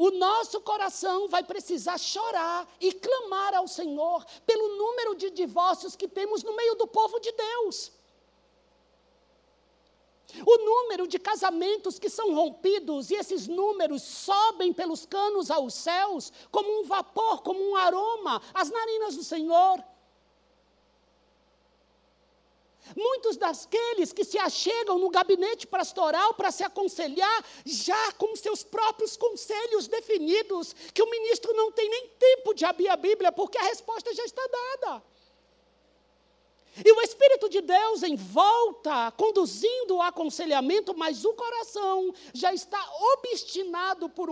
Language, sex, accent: Portuguese, male, Brazilian